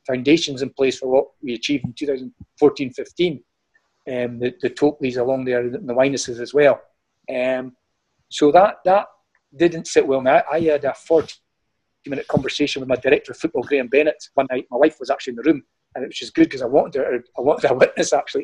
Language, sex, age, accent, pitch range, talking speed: English, male, 40-59, British, 135-165 Hz, 195 wpm